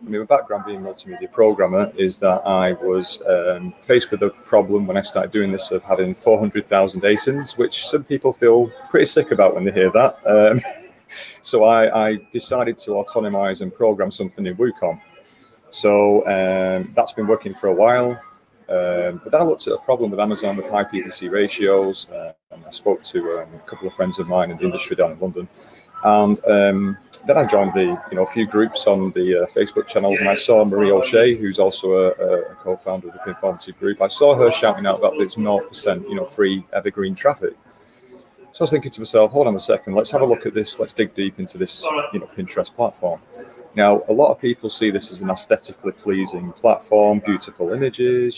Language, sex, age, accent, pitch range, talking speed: English, male, 30-49, British, 95-125 Hz, 215 wpm